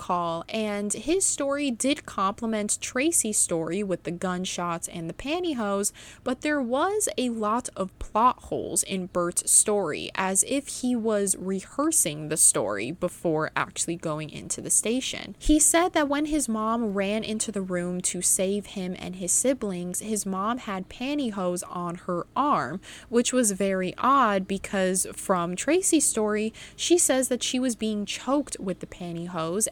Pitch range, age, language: 180-255 Hz, 20-39, English